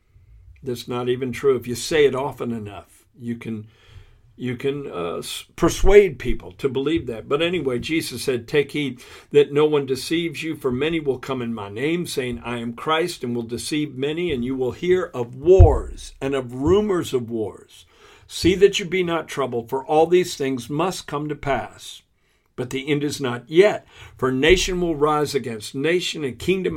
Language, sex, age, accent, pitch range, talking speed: English, male, 60-79, American, 120-160 Hz, 190 wpm